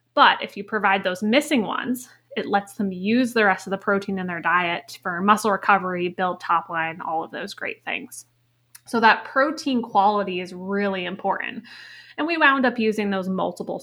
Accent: American